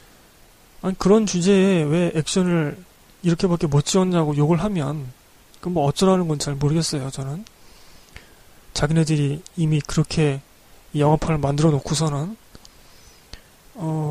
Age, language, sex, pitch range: 20-39, Korean, male, 145-185 Hz